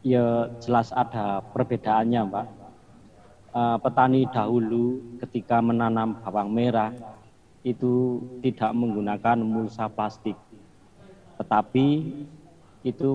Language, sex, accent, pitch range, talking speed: Indonesian, male, native, 110-125 Hz, 80 wpm